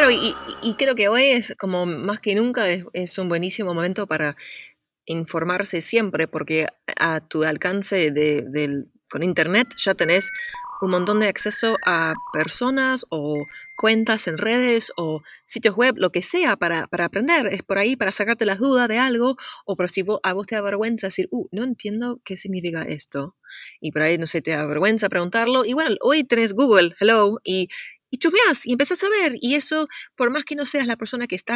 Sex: female